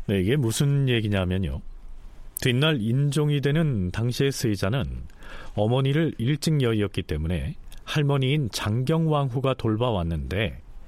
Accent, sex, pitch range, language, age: native, male, 105-160 Hz, Korean, 40-59